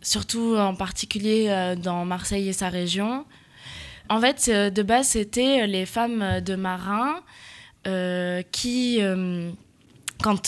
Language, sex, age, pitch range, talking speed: French, female, 20-39, 185-225 Hz, 135 wpm